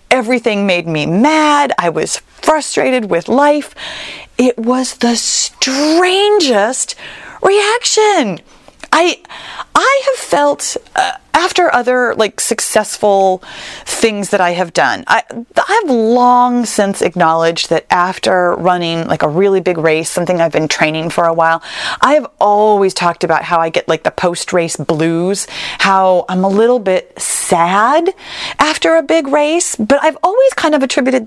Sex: female